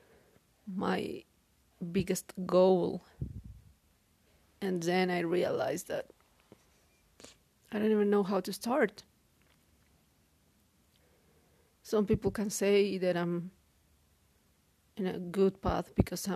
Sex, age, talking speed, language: female, 30-49, 95 wpm, English